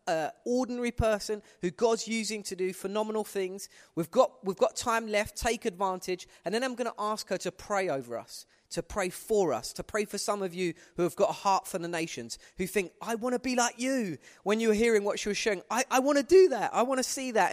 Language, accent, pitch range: English, British, 185-250 Hz